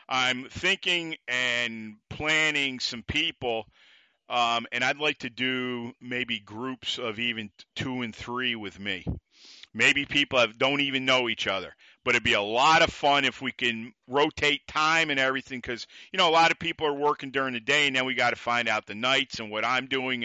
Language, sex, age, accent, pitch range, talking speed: English, male, 50-69, American, 120-150 Hz, 200 wpm